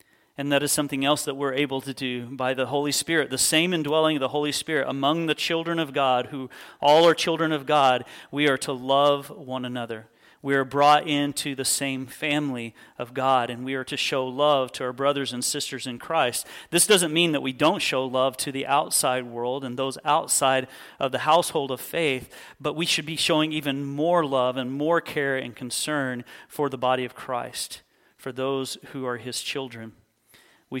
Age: 40-59